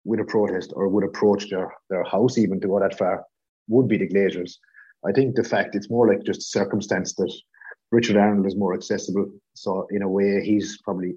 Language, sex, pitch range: English, male, 100-120 Hz